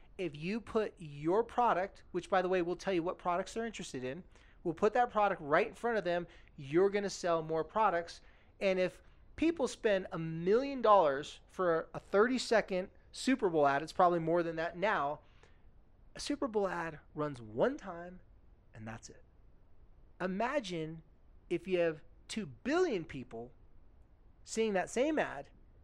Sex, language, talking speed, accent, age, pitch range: male, English, 165 wpm, American, 30-49, 135-190 Hz